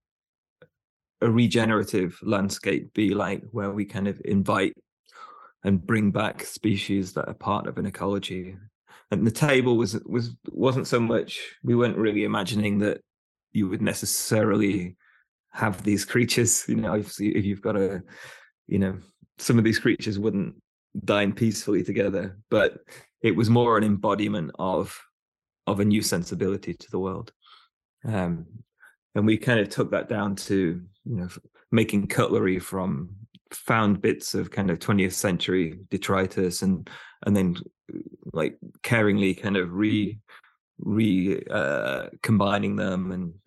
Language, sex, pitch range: English, male, 95-110 Hz